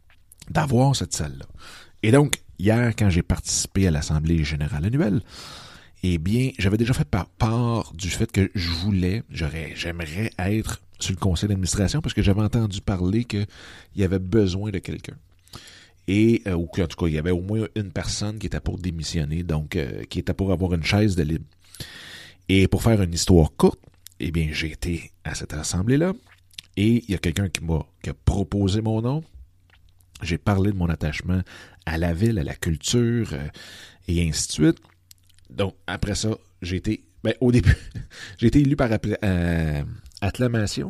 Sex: male